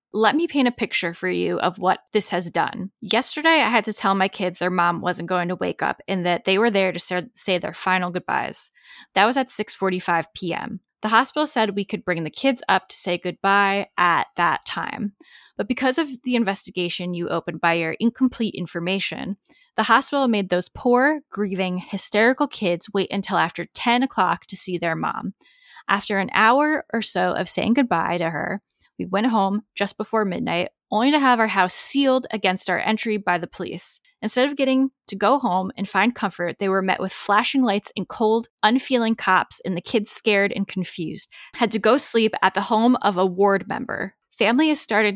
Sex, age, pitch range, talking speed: female, 10-29, 185-240 Hz, 200 wpm